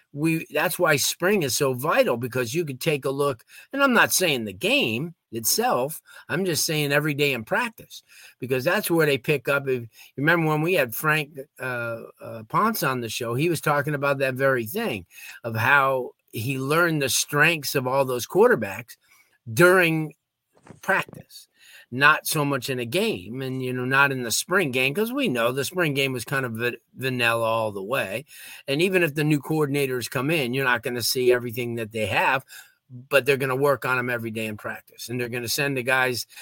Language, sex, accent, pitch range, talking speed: English, male, American, 120-150 Hz, 210 wpm